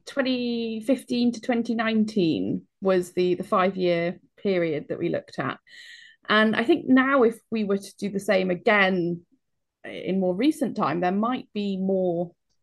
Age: 20-39